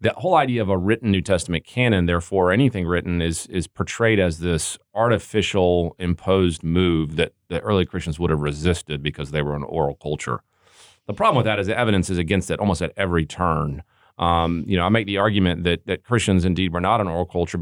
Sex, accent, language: male, American, English